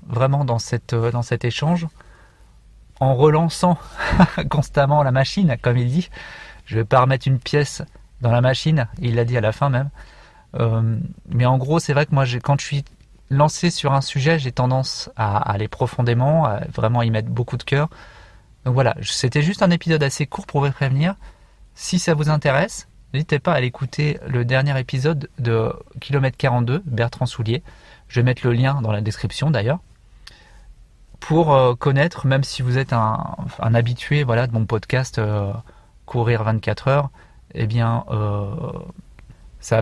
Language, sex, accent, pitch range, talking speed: French, male, French, 115-145 Hz, 165 wpm